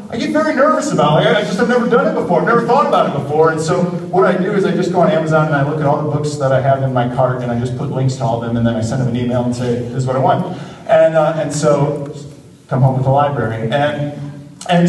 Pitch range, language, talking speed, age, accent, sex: 125-165 Hz, English, 310 wpm, 40-59, American, male